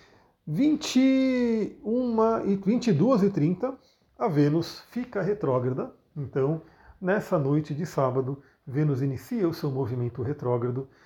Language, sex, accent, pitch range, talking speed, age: Portuguese, male, Brazilian, 135-180 Hz, 110 wpm, 40-59